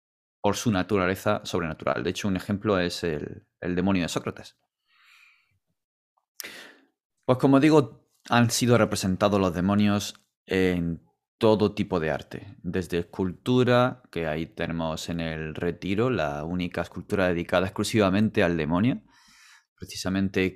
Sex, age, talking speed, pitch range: male, 30-49, 125 wpm, 90-115 Hz